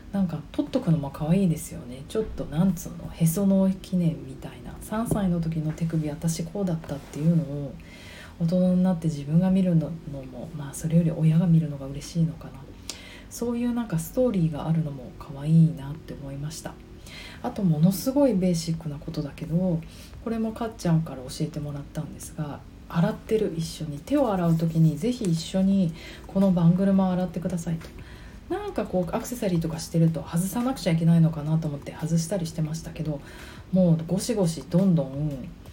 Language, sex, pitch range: Japanese, female, 150-190 Hz